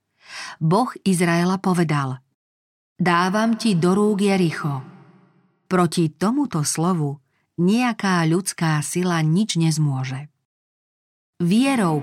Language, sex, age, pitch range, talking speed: Slovak, female, 40-59, 155-190 Hz, 85 wpm